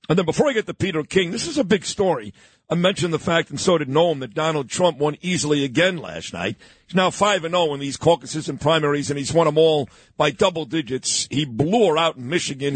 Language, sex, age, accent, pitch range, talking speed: English, male, 50-69, American, 150-200 Hz, 245 wpm